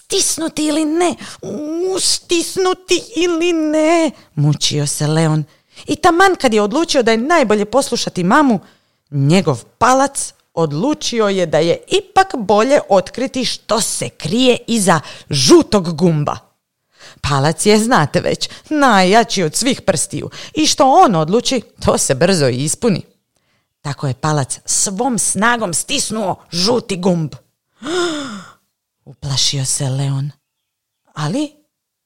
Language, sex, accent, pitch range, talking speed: Croatian, female, native, 165-270 Hz, 115 wpm